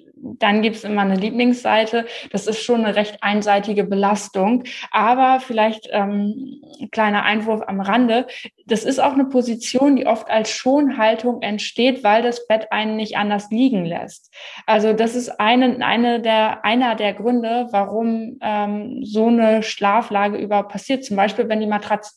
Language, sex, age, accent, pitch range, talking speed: German, female, 20-39, German, 200-230 Hz, 150 wpm